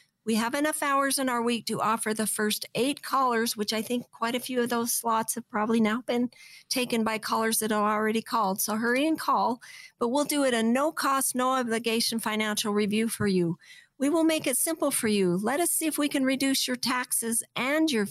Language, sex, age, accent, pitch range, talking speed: English, female, 50-69, American, 210-260 Hz, 225 wpm